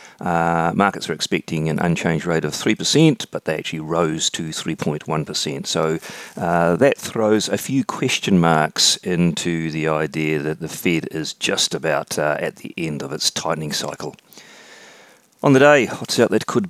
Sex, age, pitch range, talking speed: male, 40-59, 85-110 Hz, 170 wpm